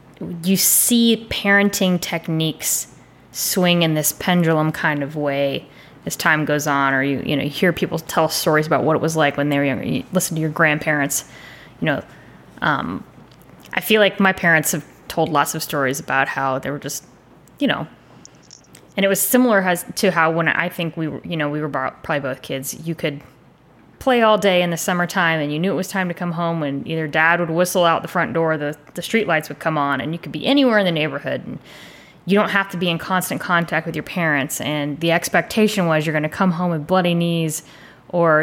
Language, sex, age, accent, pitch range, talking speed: English, female, 20-39, American, 155-185 Hz, 220 wpm